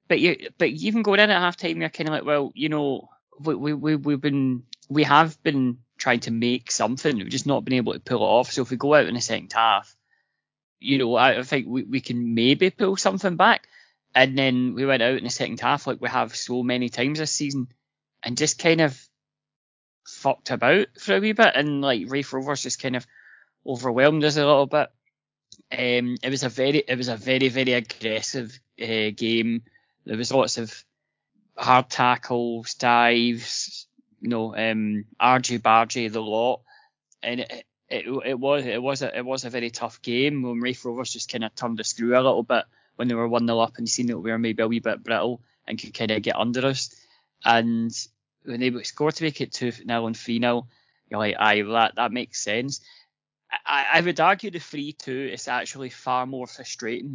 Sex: male